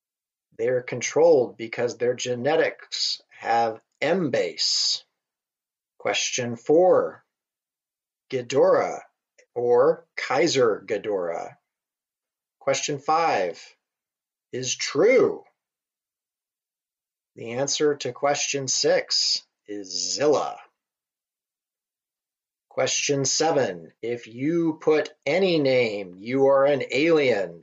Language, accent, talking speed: English, American, 80 wpm